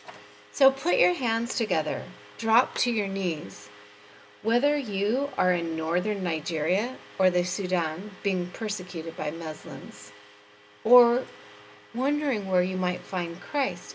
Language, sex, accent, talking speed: English, female, American, 125 wpm